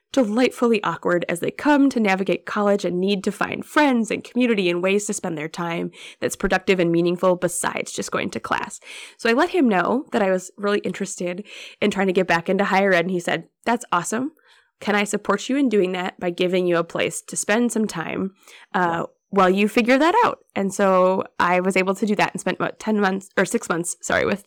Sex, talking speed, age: female, 230 wpm, 20-39